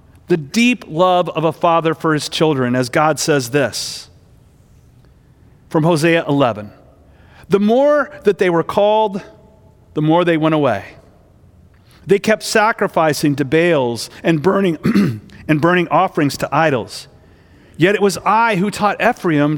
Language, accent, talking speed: English, American, 140 wpm